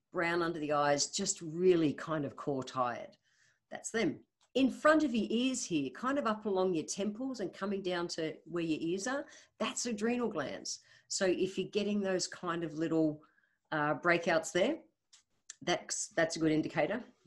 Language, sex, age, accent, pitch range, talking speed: English, female, 50-69, Australian, 160-210 Hz, 175 wpm